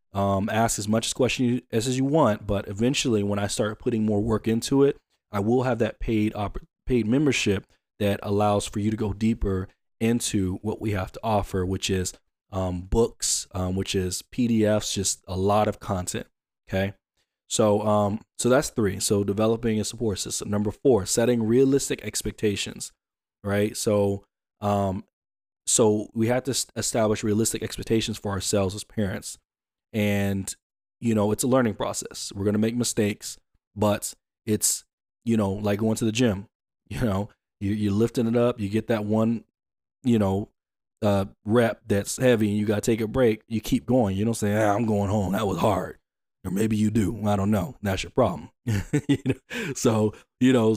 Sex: male